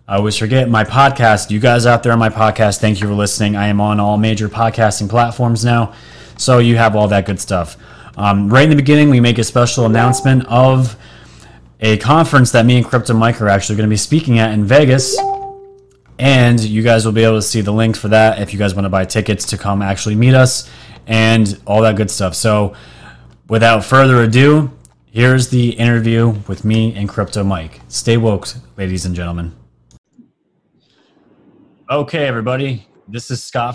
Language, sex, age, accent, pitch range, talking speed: English, male, 30-49, American, 105-125 Hz, 195 wpm